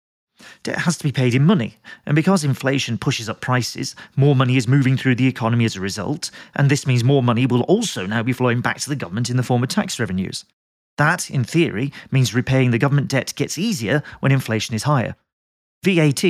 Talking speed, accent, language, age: 215 wpm, British, English, 40-59